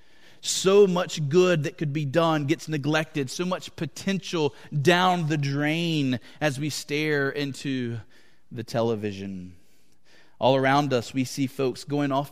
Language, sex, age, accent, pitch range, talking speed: English, male, 30-49, American, 120-160 Hz, 140 wpm